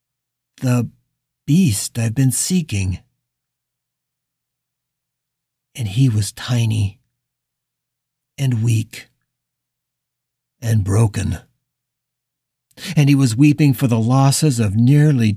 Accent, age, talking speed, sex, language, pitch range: American, 50-69, 85 wpm, male, English, 120-165 Hz